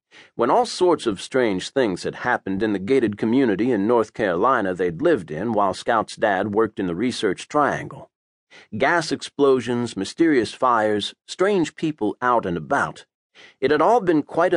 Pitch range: 95-140 Hz